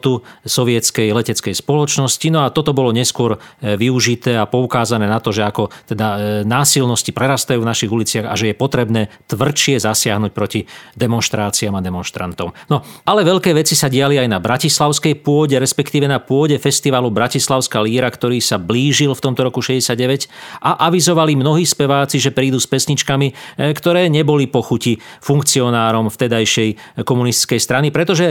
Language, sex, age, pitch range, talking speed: Slovak, male, 40-59, 115-140 Hz, 150 wpm